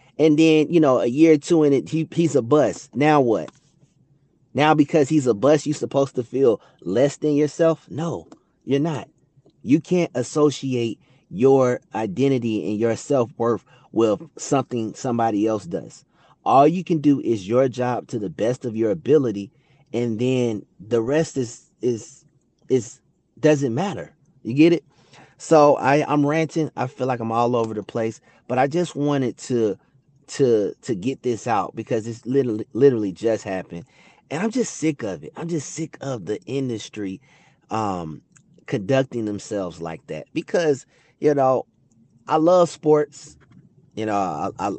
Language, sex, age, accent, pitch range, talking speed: English, male, 30-49, American, 110-150 Hz, 165 wpm